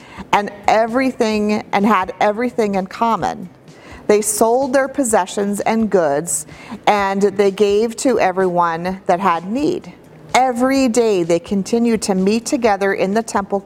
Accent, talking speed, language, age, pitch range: American, 135 wpm, English, 40-59, 190-235 Hz